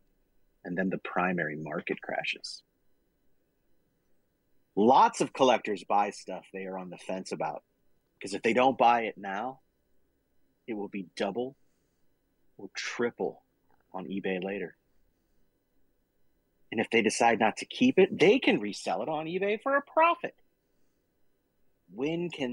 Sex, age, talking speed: male, 30-49, 140 wpm